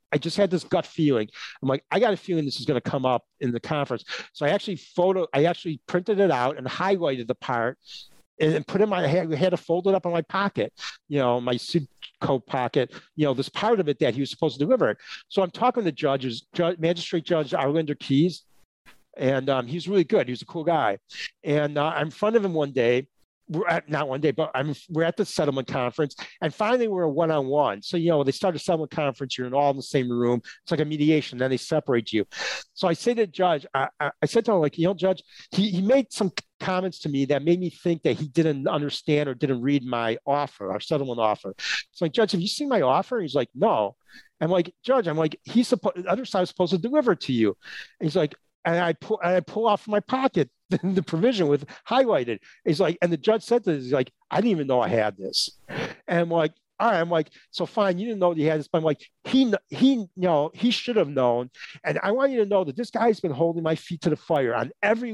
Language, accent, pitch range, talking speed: English, American, 140-195 Hz, 255 wpm